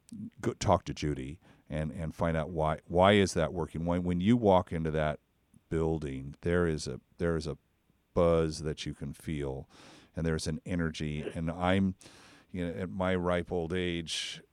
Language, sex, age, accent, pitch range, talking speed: English, male, 50-69, American, 80-95 Hz, 180 wpm